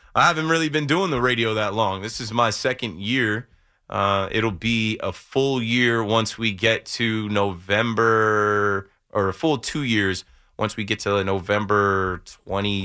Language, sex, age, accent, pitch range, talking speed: English, male, 20-39, American, 100-115 Hz, 170 wpm